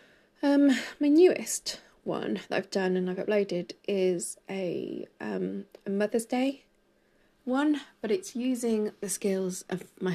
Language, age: English, 20-39